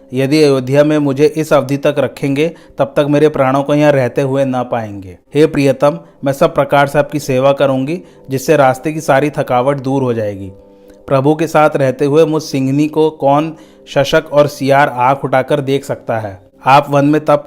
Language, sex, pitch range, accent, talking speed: Hindi, male, 130-150 Hz, native, 190 wpm